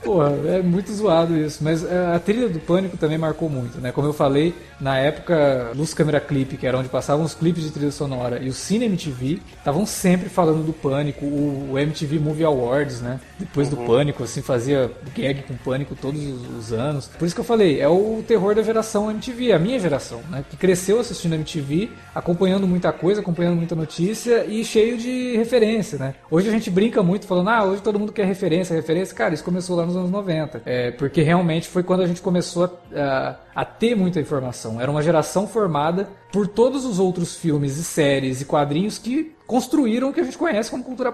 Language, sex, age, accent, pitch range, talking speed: Portuguese, male, 20-39, Brazilian, 140-190 Hz, 205 wpm